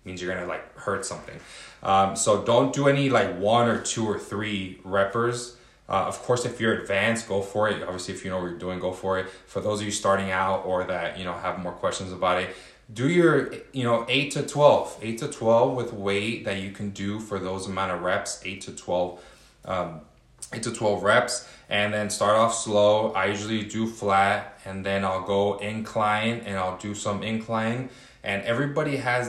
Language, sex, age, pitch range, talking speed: English, male, 20-39, 95-115 Hz, 210 wpm